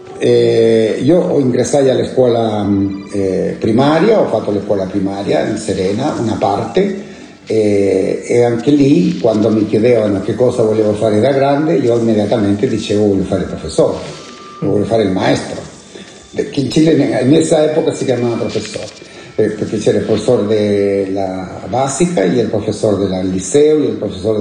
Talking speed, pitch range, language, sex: 155 wpm, 100-140 Hz, Italian, male